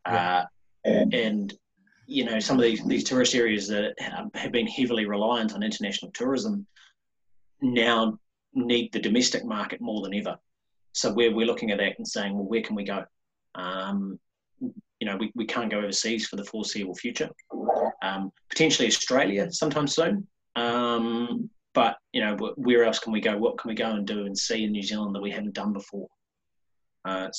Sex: male